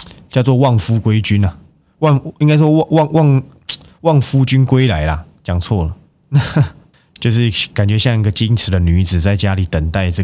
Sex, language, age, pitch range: male, Chinese, 20-39, 90-125 Hz